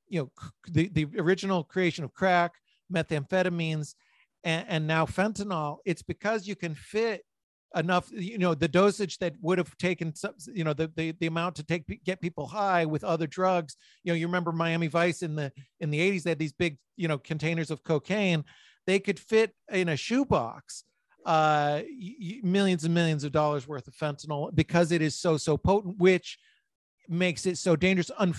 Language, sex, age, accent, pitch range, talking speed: English, male, 40-59, American, 160-190 Hz, 185 wpm